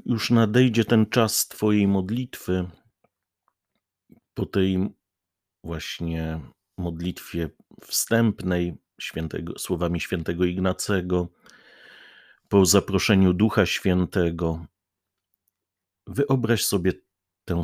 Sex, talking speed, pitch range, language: male, 70 wpm, 90-105 Hz, Polish